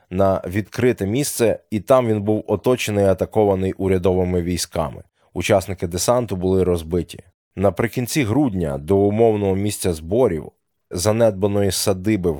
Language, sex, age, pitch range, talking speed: Ukrainian, male, 20-39, 90-105 Hz, 120 wpm